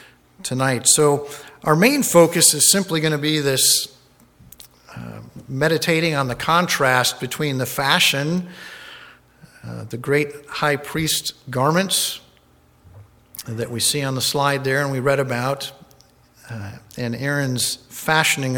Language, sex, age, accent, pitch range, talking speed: English, male, 50-69, American, 125-155 Hz, 130 wpm